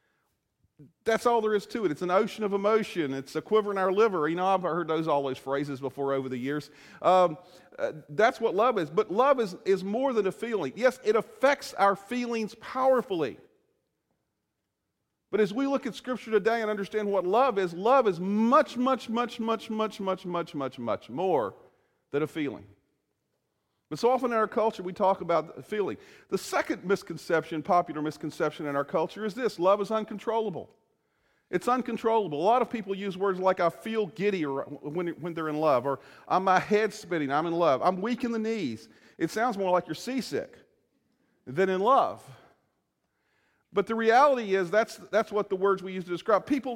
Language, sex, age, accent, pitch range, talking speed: English, male, 40-59, American, 170-225 Hz, 195 wpm